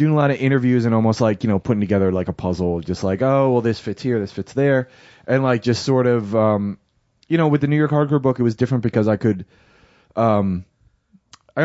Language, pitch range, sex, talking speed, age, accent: English, 105-135 Hz, male, 240 wpm, 20-39, American